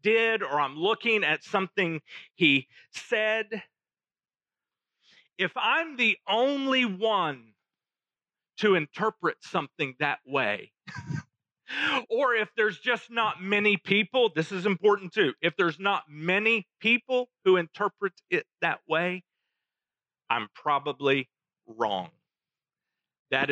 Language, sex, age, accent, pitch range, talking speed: English, male, 40-59, American, 145-210 Hz, 110 wpm